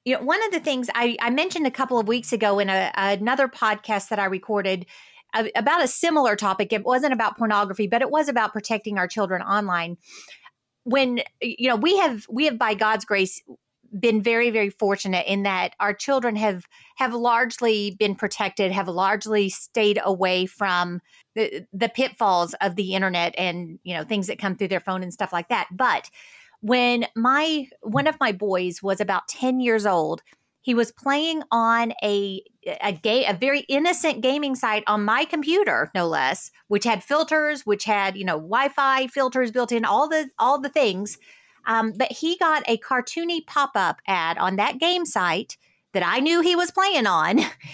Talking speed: 185 wpm